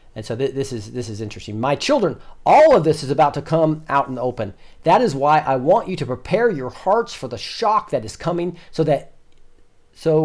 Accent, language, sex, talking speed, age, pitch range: American, English, male, 230 wpm, 40-59, 110-150 Hz